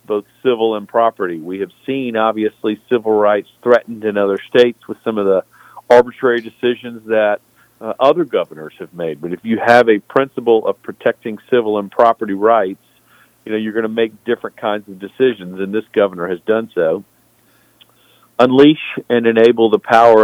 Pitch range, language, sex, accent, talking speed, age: 105-120 Hz, English, male, American, 175 wpm, 50-69